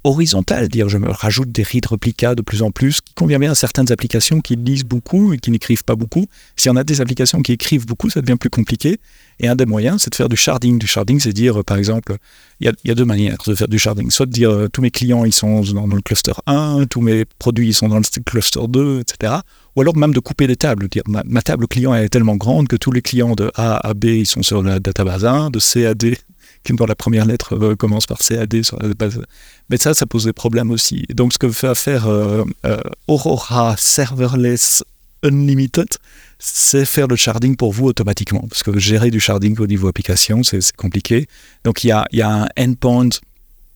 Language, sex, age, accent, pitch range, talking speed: French, male, 40-59, French, 110-130 Hz, 245 wpm